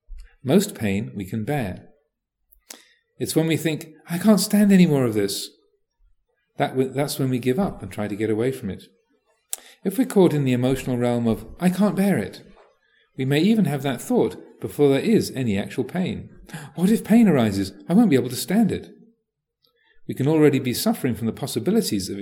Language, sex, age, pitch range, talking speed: English, male, 40-59, 115-170 Hz, 200 wpm